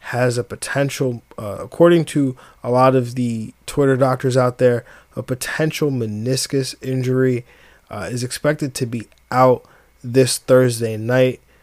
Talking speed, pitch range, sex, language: 140 wpm, 115-130 Hz, male, English